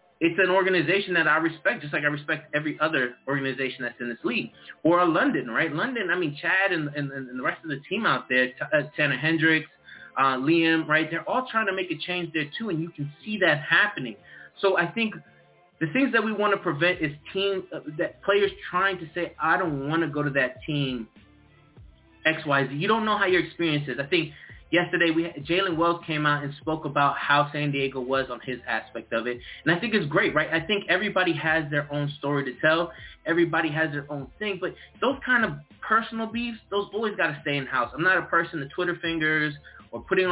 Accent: American